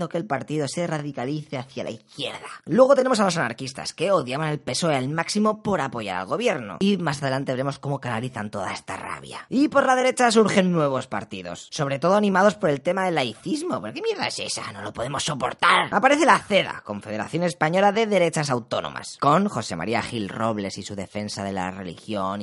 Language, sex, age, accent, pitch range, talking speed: Spanish, female, 20-39, Spanish, 125-195 Hz, 200 wpm